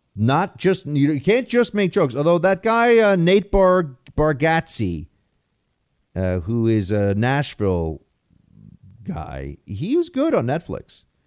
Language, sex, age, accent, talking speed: English, male, 50-69, American, 135 wpm